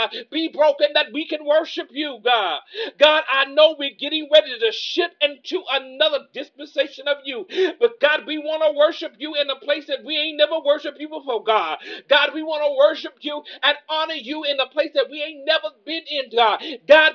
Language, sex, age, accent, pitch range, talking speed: English, male, 50-69, American, 265-310 Hz, 210 wpm